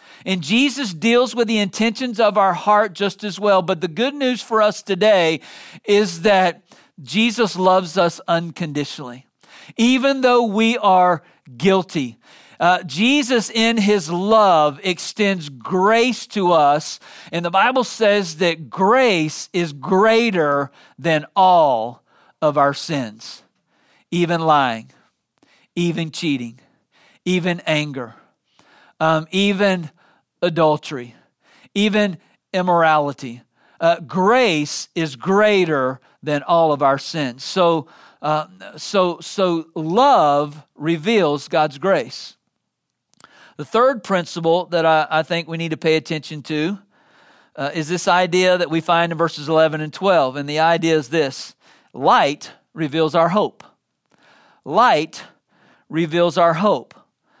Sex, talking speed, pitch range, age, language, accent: male, 125 wpm, 155-205 Hz, 50-69, English, American